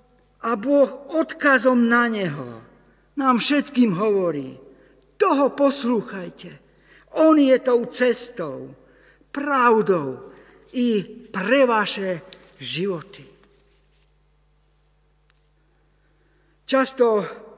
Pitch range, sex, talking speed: 185-255 Hz, male, 70 wpm